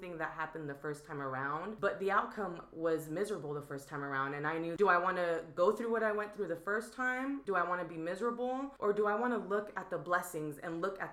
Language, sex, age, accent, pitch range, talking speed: English, female, 20-39, American, 150-175 Hz, 270 wpm